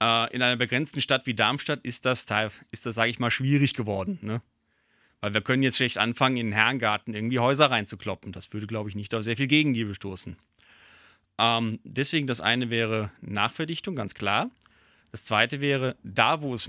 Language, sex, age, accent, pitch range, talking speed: German, male, 30-49, German, 110-140 Hz, 185 wpm